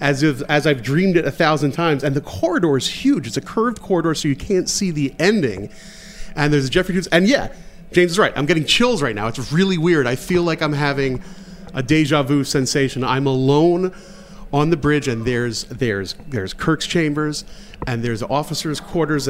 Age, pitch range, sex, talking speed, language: 30-49, 130-185 Hz, male, 200 wpm, English